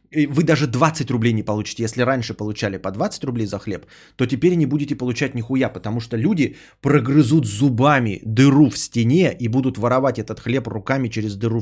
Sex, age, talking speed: male, 20-39, 185 wpm